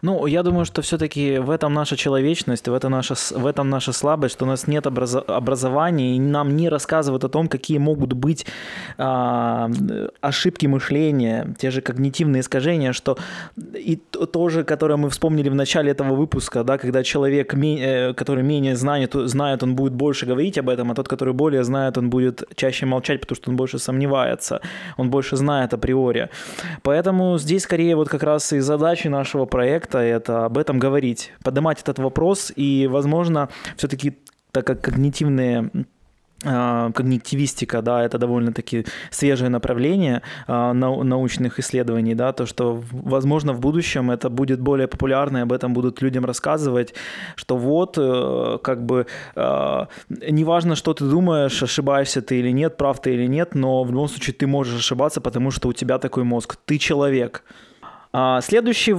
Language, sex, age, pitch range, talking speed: Russian, male, 20-39, 130-155 Hz, 165 wpm